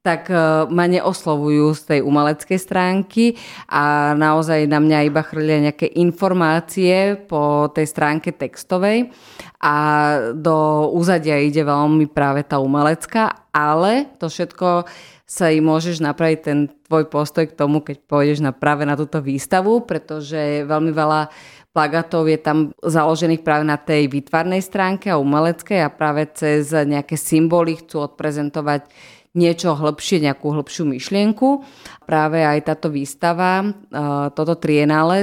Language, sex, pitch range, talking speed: Slovak, female, 150-170 Hz, 135 wpm